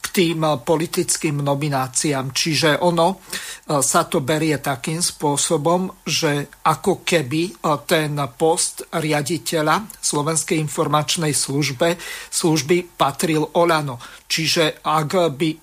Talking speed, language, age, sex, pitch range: 95 wpm, Slovak, 50-69, male, 150-170 Hz